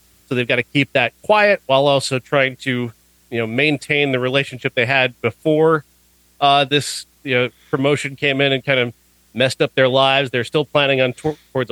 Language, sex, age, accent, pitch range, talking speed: English, male, 40-59, American, 120-160 Hz, 200 wpm